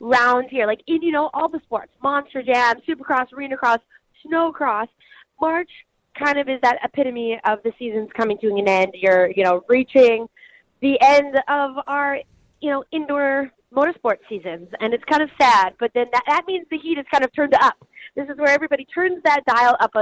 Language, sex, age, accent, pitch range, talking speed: English, female, 20-39, American, 210-275 Hz, 200 wpm